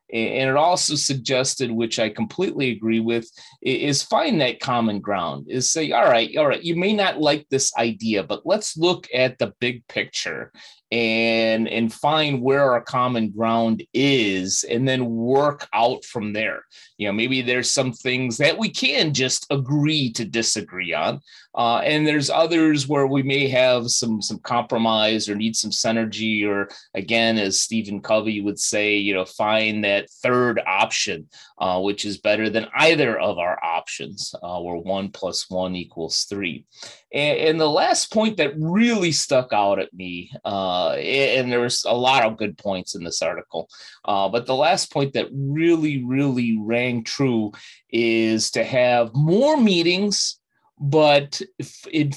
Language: English